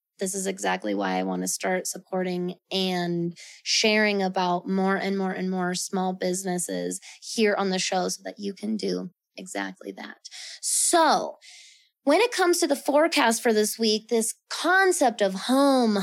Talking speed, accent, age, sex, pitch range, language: 165 wpm, American, 20-39, female, 195-245 Hz, English